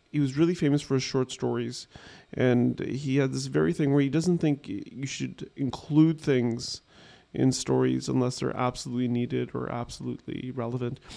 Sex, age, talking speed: male, 30-49, 165 wpm